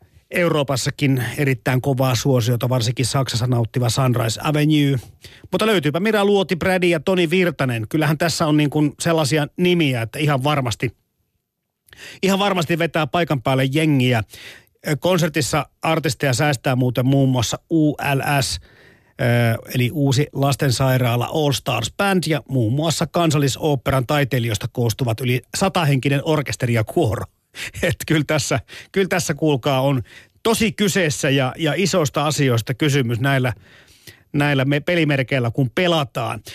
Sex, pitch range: male, 130-160 Hz